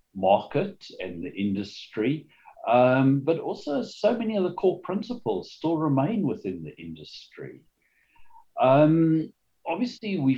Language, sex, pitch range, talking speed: English, male, 100-155 Hz, 120 wpm